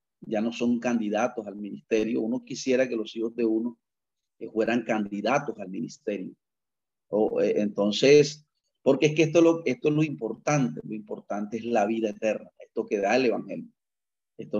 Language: Spanish